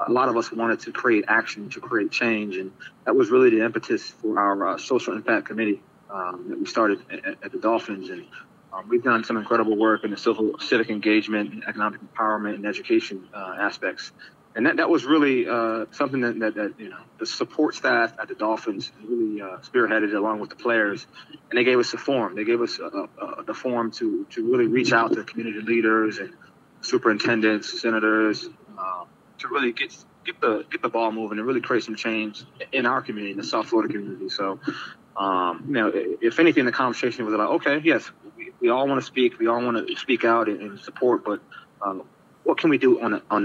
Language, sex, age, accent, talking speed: English, male, 20-39, American, 215 wpm